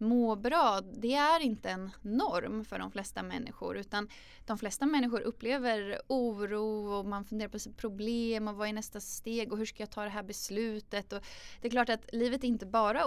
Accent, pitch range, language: native, 190-230 Hz, Swedish